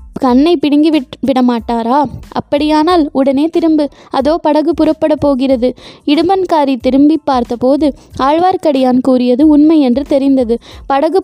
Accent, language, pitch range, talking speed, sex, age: native, Tamil, 260-310 Hz, 100 wpm, female, 20-39